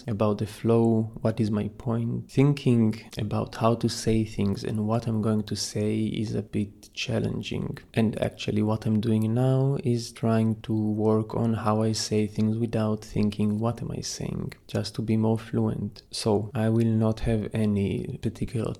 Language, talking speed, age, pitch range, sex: English, 180 wpm, 20-39, 105-120 Hz, male